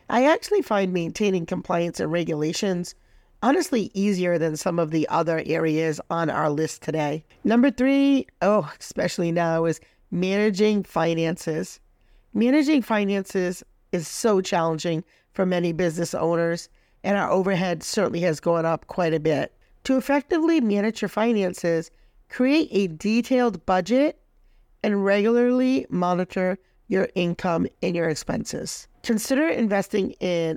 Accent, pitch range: American, 170-230 Hz